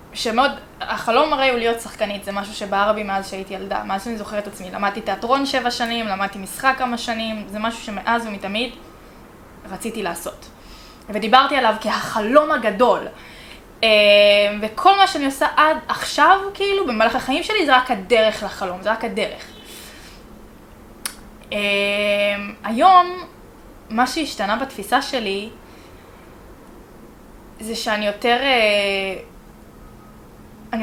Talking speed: 120 wpm